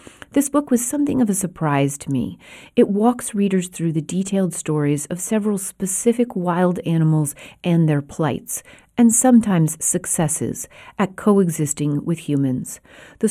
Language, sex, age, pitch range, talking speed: English, female, 40-59, 150-195 Hz, 145 wpm